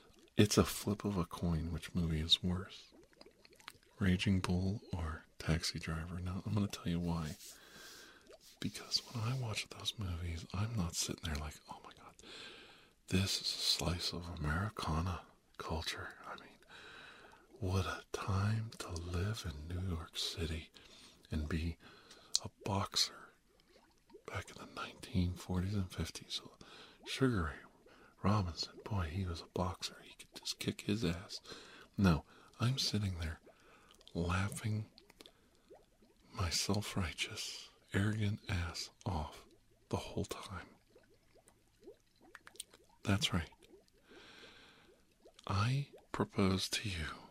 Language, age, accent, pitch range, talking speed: English, 50-69, American, 85-105 Hz, 125 wpm